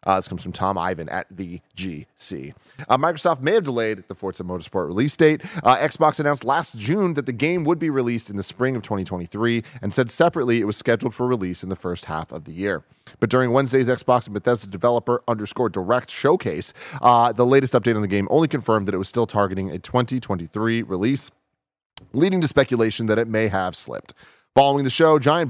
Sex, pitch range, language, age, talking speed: male, 100-135 Hz, English, 30-49, 210 wpm